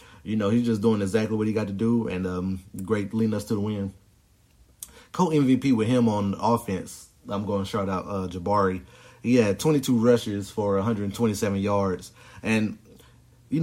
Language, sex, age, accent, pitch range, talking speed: English, male, 30-49, American, 100-120 Hz, 175 wpm